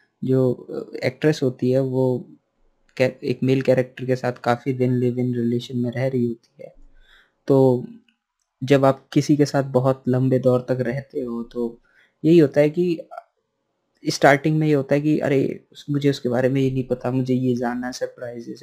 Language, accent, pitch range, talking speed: Hindi, native, 125-145 Hz, 170 wpm